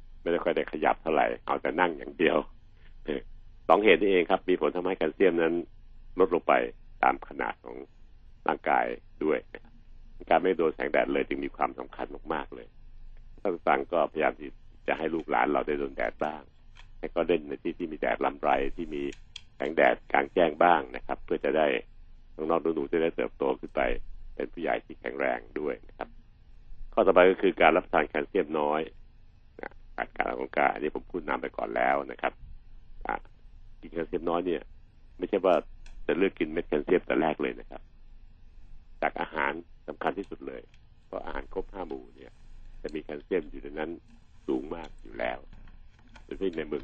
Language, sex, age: Thai, male, 60-79